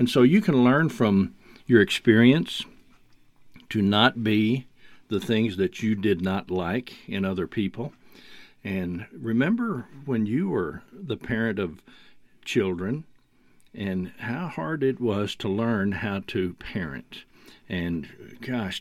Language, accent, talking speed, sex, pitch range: English, American, 135 wpm, male, 105-135 Hz